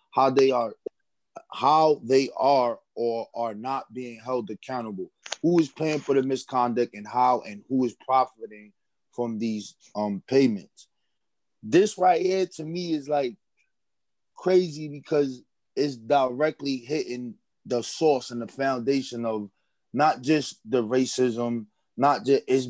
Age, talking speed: 20-39, 140 wpm